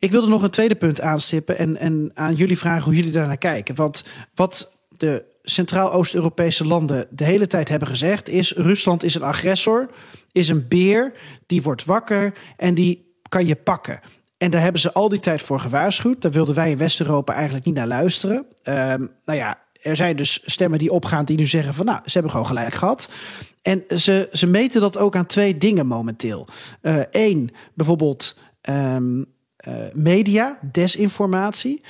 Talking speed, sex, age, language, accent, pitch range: 180 wpm, male, 40-59, Dutch, Dutch, 150-185 Hz